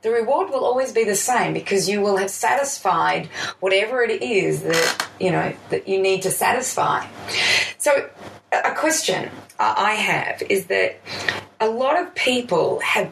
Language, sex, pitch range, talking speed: English, female, 185-255 Hz, 160 wpm